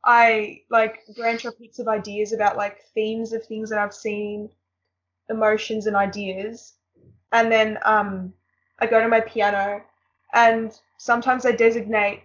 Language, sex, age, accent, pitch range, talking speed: English, female, 10-29, Australian, 205-230 Hz, 145 wpm